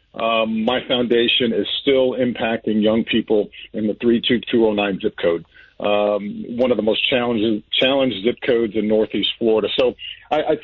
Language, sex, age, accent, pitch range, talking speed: English, male, 50-69, American, 115-145 Hz, 145 wpm